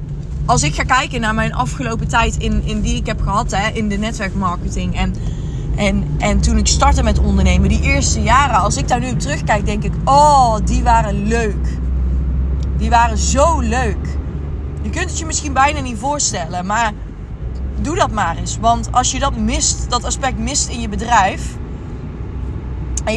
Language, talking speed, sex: Dutch, 175 wpm, female